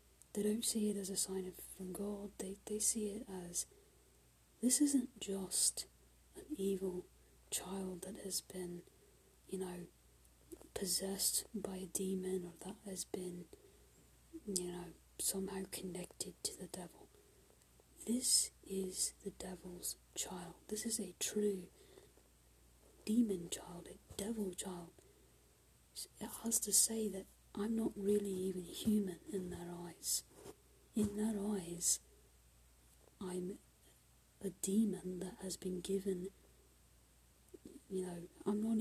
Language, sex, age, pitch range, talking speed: English, female, 30-49, 180-205 Hz, 125 wpm